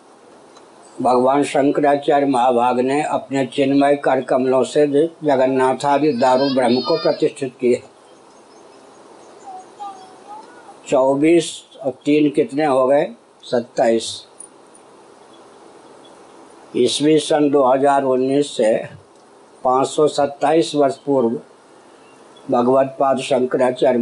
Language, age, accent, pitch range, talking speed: Hindi, 60-79, native, 130-150 Hz, 75 wpm